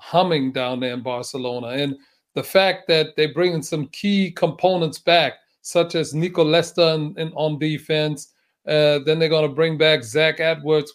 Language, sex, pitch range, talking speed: English, male, 150-170 Hz, 180 wpm